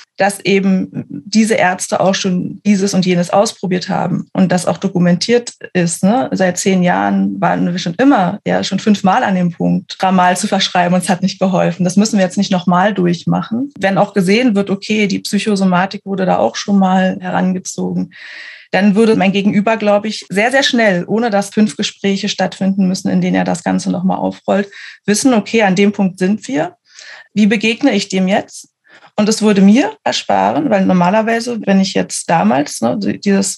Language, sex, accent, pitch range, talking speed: German, female, German, 185-215 Hz, 185 wpm